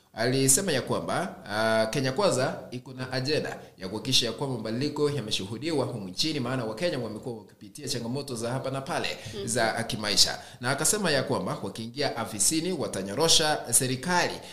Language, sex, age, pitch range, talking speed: English, male, 30-49, 110-145 Hz, 150 wpm